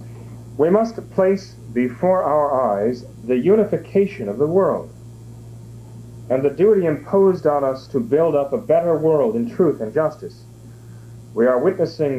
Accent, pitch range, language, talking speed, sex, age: American, 115-155 Hz, English, 150 wpm, male, 40-59